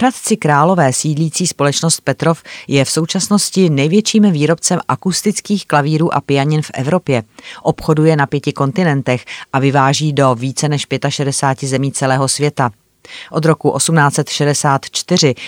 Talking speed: 125 wpm